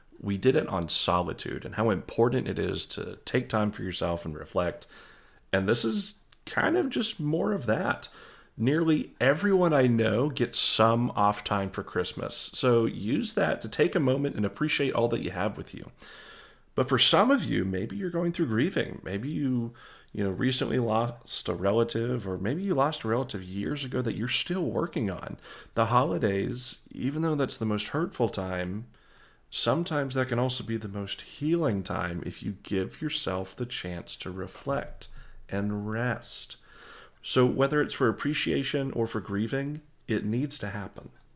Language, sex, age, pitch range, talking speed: English, male, 30-49, 100-140 Hz, 175 wpm